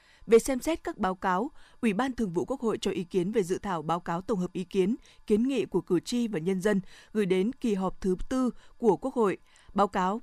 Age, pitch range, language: 20-39, 185-230 Hz, Vietnamese